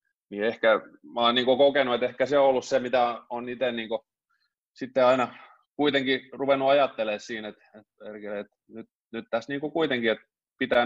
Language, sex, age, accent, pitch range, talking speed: Finnish, male, 30-49, native, 110-130 Hz, 165 wpm